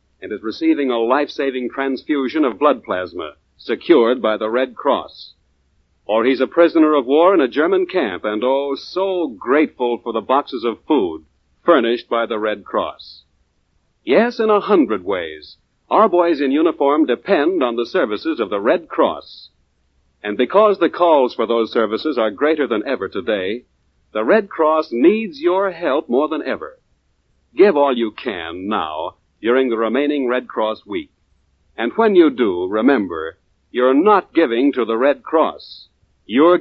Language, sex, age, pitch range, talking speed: English, male, 60-79, 105-160 Hz, 165 wpm